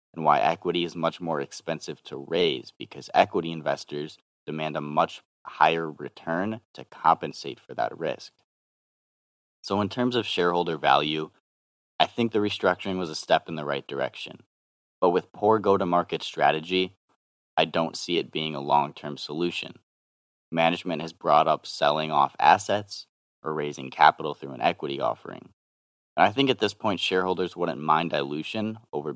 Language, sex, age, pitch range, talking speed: English, male, 30-49, 75-100 Hz, 160 wpm